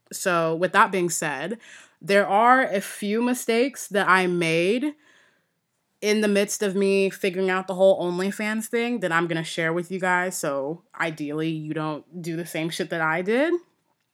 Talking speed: 185 wpm